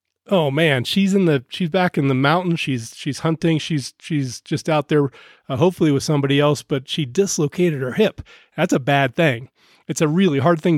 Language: English